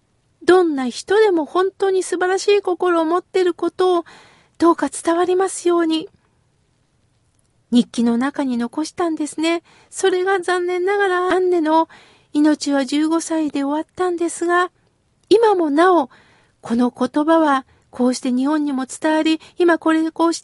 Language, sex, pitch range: Japanese, female, 280-360 Hz